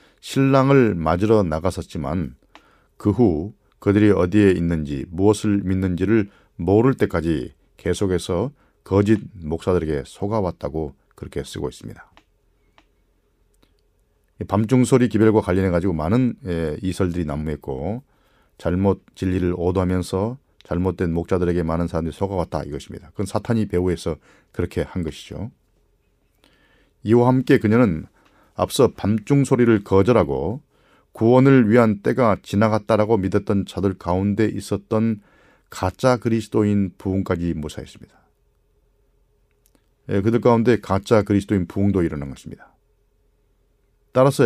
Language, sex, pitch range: Korean, male, 90-115 Hz